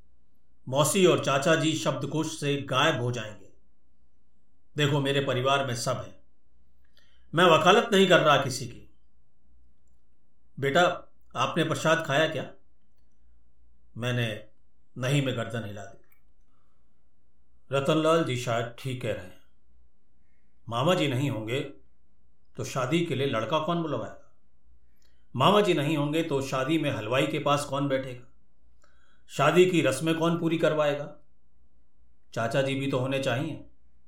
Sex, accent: male, native